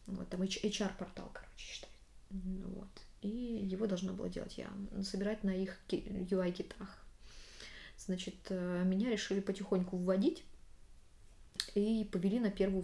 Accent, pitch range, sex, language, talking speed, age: native, 185-225 Hz, female, Russian, 115 wpm, 20-39